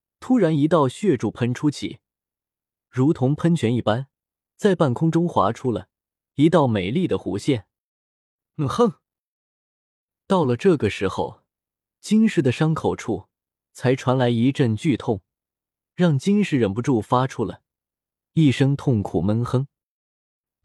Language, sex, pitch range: Chinese, male, 110-165 Hz